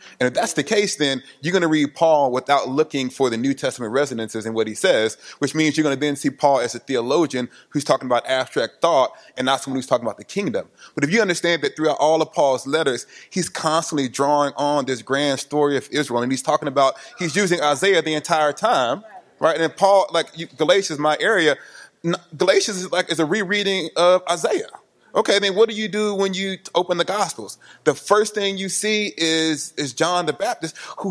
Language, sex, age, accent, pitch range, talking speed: English, male, 20-39, American, 140-185 Hz, 215 wpm